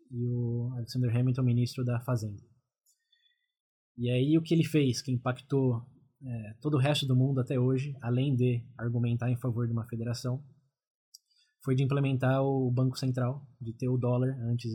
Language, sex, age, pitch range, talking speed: Portuguese, male, 20-39, 120-135 Hz, 165 wpm